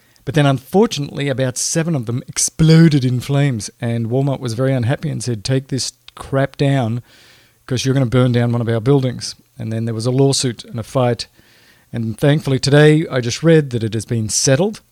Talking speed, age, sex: 205 wpm, 40-59, male